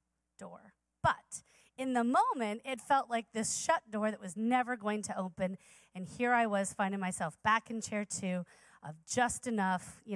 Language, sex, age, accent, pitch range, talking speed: English, female, 30-49, American, 185-245 Hz, 185 wpm